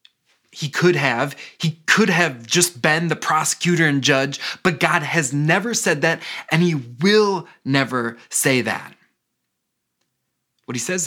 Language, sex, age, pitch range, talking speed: English, male, 20-39, 140-180 Hz, 145 wpm